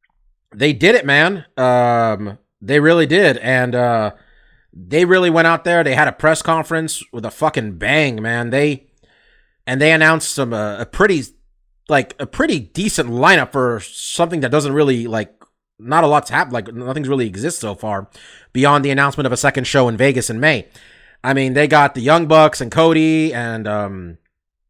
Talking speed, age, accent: 185 wpm, 30-49, American